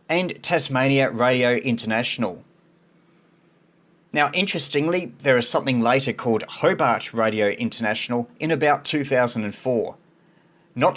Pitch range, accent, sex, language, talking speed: 125-165 Hz, Australian, male, English, 100 wpm